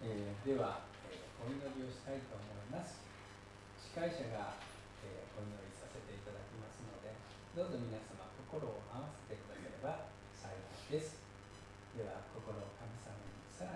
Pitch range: 100-115 Hz